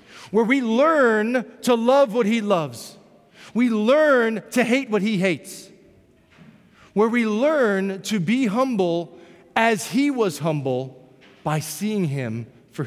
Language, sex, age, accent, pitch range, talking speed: English, male, 40-59, American, 190-240 Hz, 135 wpm